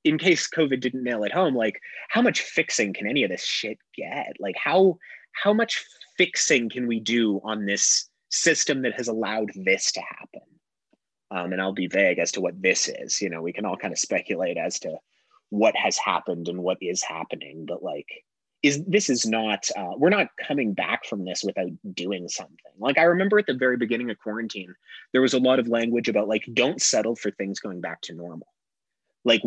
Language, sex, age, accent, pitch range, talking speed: English, male, 30-49, American, 100-135 Hz, 210 wpm